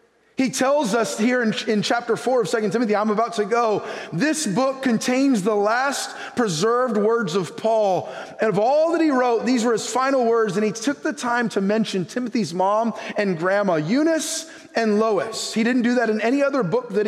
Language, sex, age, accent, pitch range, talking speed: English, male, 30-49, American, 170-235 Hz, 205 wpm